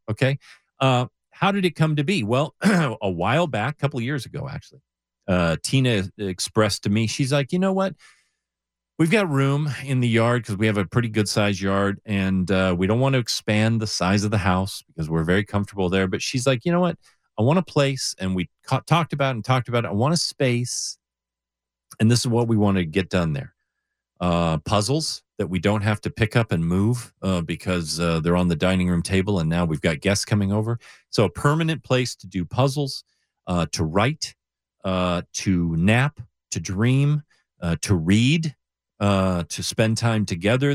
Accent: American